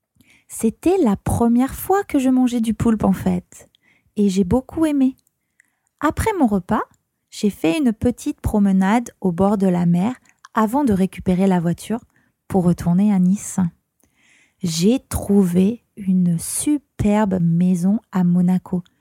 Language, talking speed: English, 140 wpm